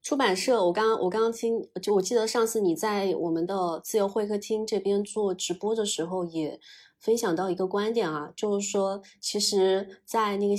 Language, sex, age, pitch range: Chinese, female, 20-39, 175-225 Hz